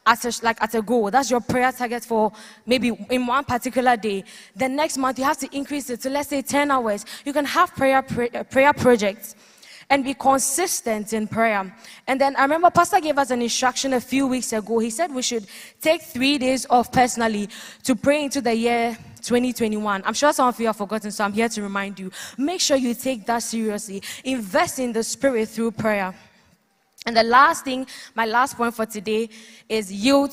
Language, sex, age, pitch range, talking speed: English, female, 10-29, 220-265 Hz, 205 wpm